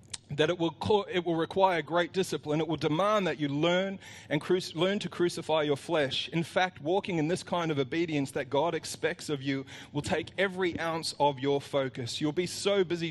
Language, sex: English, male